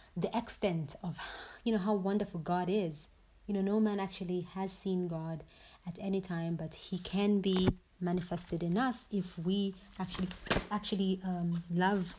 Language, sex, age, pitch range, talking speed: English, female, 30-49, 170-200 Hz, 160 wpm